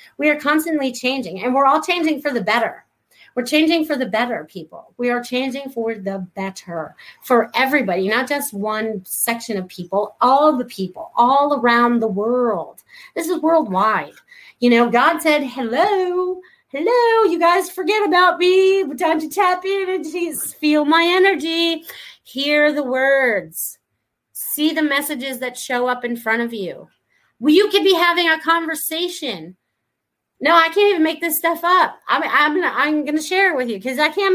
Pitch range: 245-340 Hz